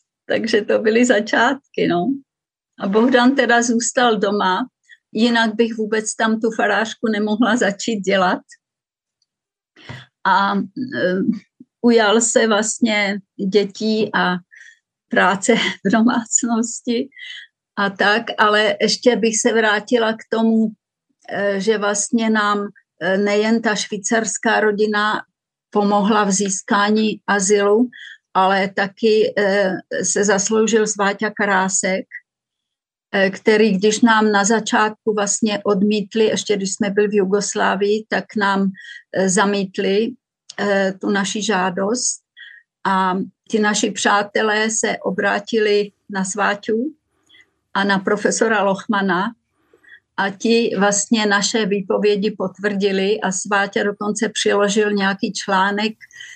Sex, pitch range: female, 200-230 Hz